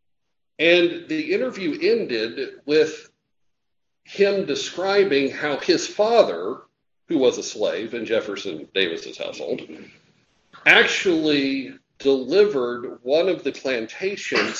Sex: male